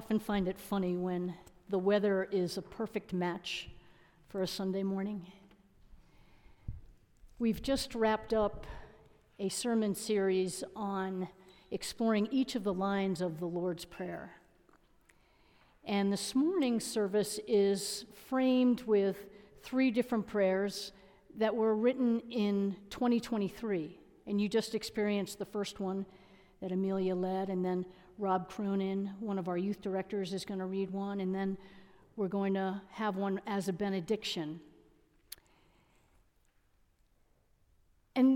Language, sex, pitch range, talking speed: English, female, 190-235 Hz, 125 wpm